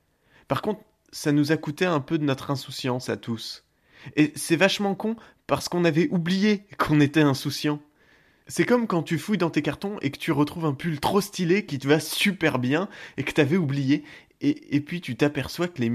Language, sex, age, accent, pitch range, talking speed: French, male, 20-39, French, 130-160 Hz, 210 wpm